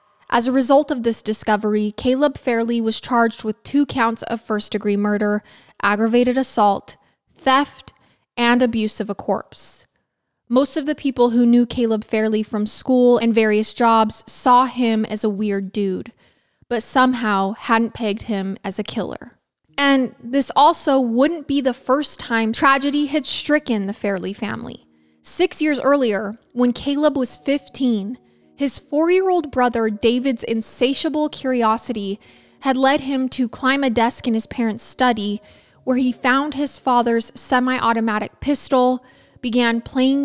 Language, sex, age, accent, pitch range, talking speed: English, female, 20-39, American, 215-265 Hz, 150 wpm